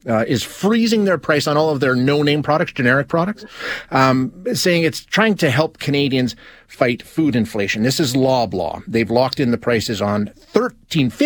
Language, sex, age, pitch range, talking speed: English, male, 30-49, 110-145 Hz, 175 wpm